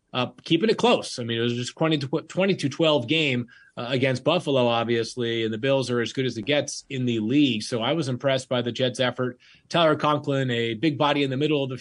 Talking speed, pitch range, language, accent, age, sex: 235 wpm, 125-150 Hz, English, American, 30-49, male